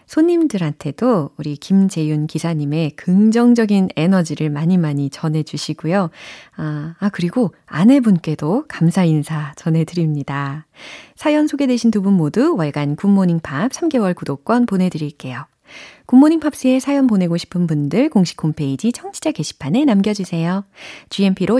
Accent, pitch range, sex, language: native, 160-255 Hz, female, Korean